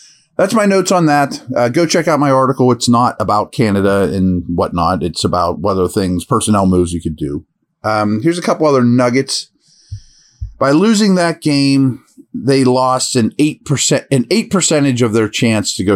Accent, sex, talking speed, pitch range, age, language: American, male, 185 wpm, 95-130 Hz, 40-59, English